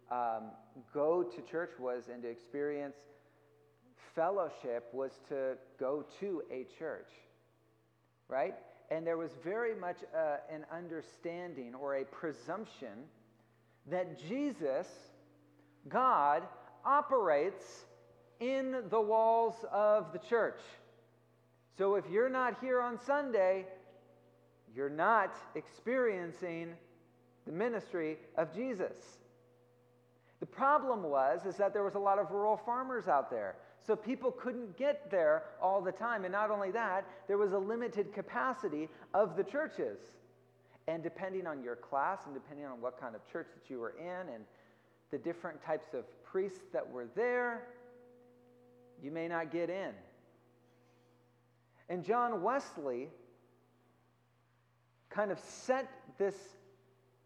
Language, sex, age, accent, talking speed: English, male, 40-59, American, 125 wpm